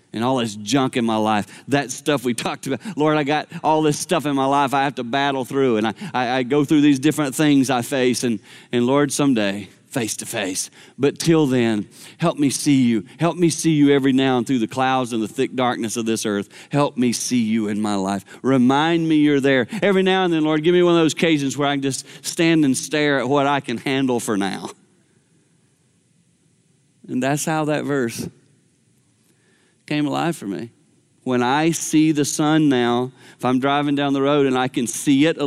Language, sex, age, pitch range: English, male, 40-59, 125-155 Hz